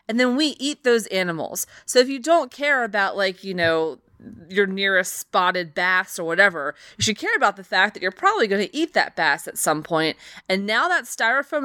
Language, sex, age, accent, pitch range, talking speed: English, female, 20-39, American, 175-220 Hz, 215 wpm